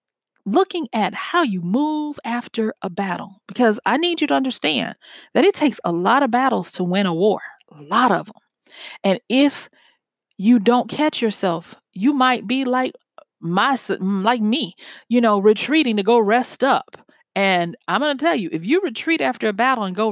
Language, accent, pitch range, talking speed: English, American, 195-260 Hz, 190 wpm